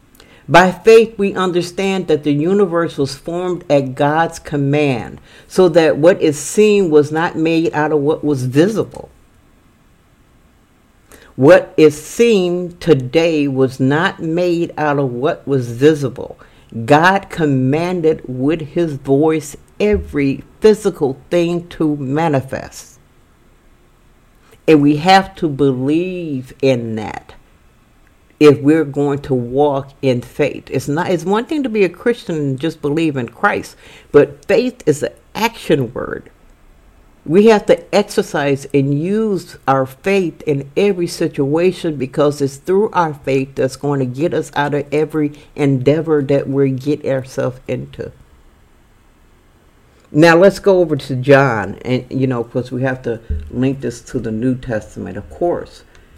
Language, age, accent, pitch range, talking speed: English, 50-69, American, 135-170 Hz, 140 wpm